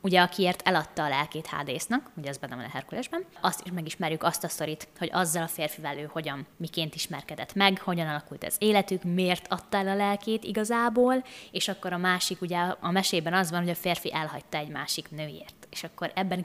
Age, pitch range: 20-39, 155-200 Hz